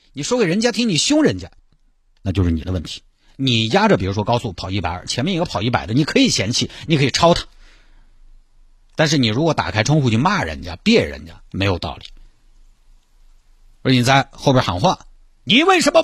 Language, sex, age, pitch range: Chinese, male, 50-69, 100-160 Hz